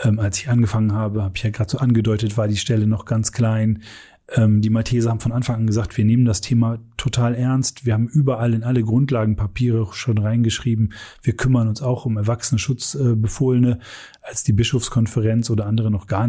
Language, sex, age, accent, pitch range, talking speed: German, male, 30-49, German, 110-125 Hz, 190 wpm